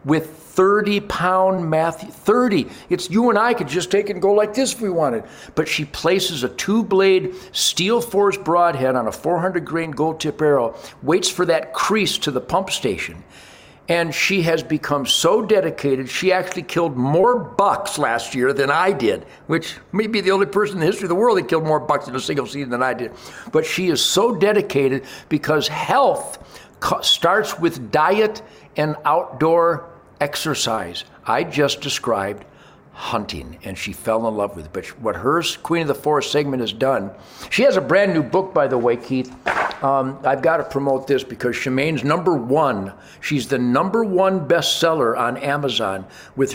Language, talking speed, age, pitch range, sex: English, 185 wpm, 60-79, 135-185 Hz, male